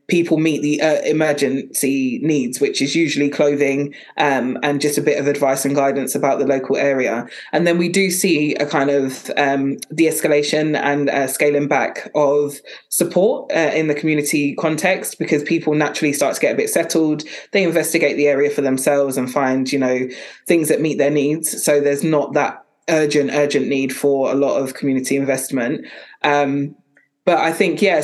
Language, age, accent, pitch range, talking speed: English, 20-39, British, 140-155 Hz, 180 wpm